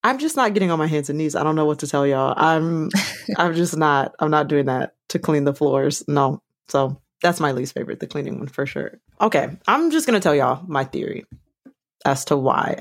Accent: American